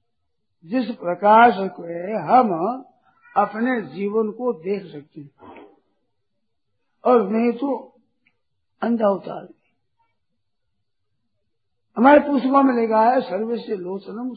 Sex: male